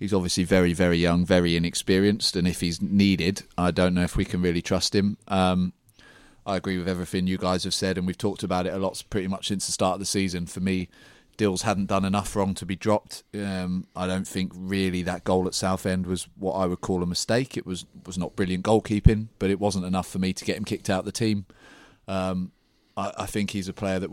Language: English